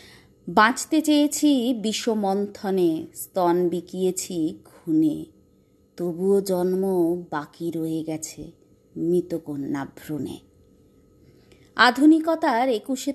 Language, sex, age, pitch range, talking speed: Bengali, female, 30-49, 170-255 Hz, 70 wpm